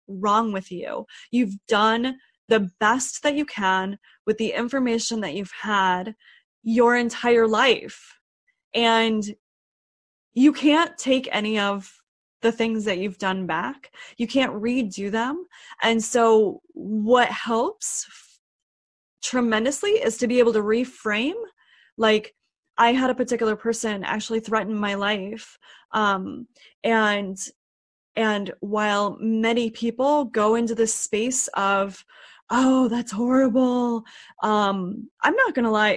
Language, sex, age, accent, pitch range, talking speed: English, female, 20-39, American, 205-245 Hz, 125 wpm